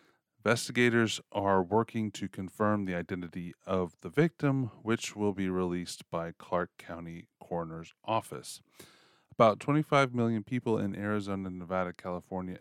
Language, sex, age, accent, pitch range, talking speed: English, male, 30-49, American, 90-110 Hz, 130 wpm